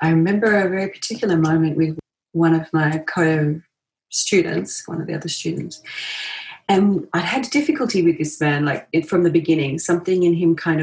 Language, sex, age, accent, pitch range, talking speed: English, female, 30-49, Australian, 155-195 Hz, 170 wpm